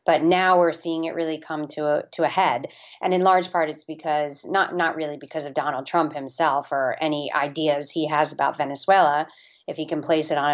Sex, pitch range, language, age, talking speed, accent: female, 145-165 Hz, English, 30-49, 220 wpm, American